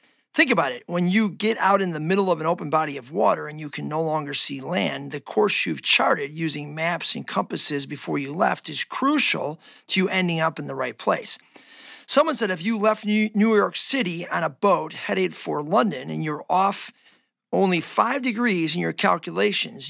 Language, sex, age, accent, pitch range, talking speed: English, male, 40-59, American, 160-215 Hz, 200 wpm